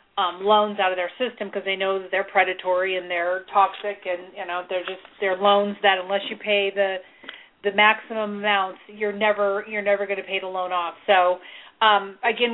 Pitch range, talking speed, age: 190-215 Hz, 205 wpm, 40-59